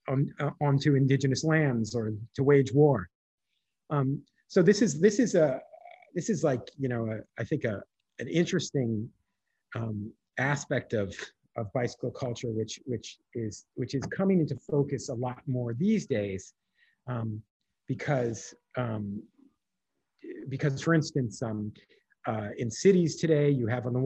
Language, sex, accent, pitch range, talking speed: English, male, American, 115-145 Hz, 150 wpm